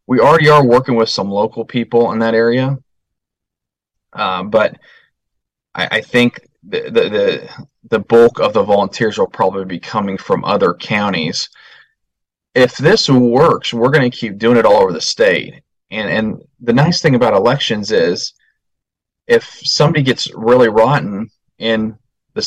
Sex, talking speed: male, 155 wpm